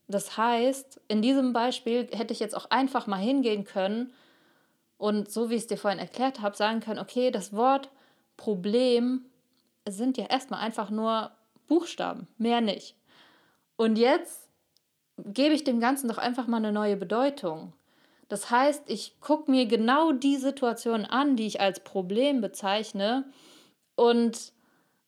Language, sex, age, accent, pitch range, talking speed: German, female, 30-49, German, 205-260 Hz, 150 wpm